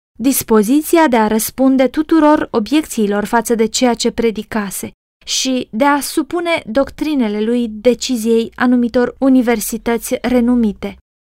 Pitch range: 225-275 Hz